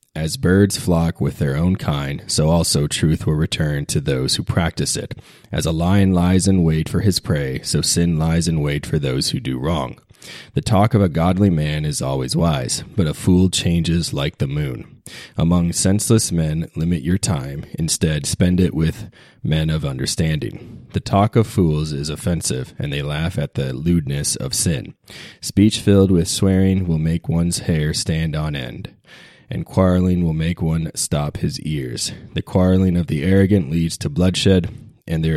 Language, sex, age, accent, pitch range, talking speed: English, male, 30-49, American, 80-95 Hz, 185 wpm